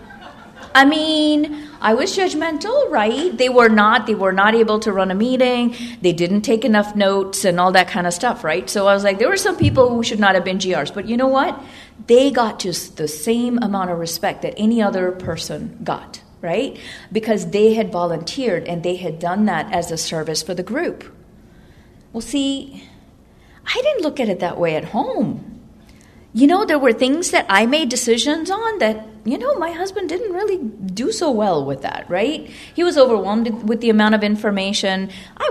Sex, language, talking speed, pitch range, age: female, English, 205 wpm, 180-245 Hz, 40-59